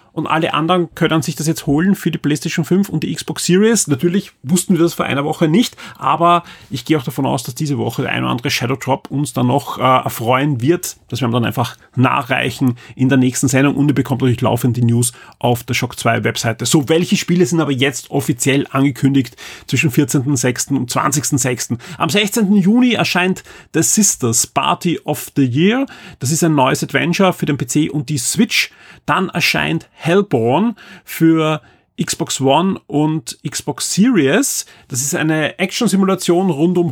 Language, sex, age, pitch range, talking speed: German, male, 30-49, 135-175 Hz, 185 wpm